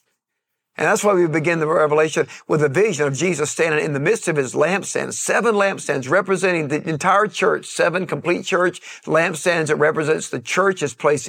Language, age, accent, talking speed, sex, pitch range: English, 50-69, American, 180 wpm, male, 150-185 Hz